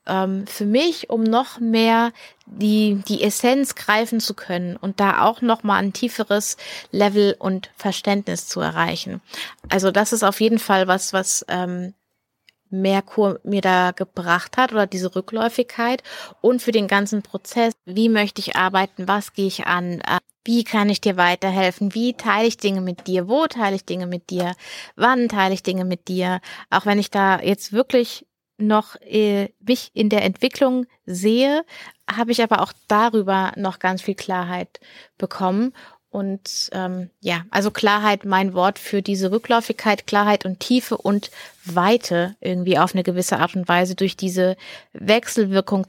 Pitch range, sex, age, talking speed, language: 190-230 Hz, female, 20-39, 160 wpm, German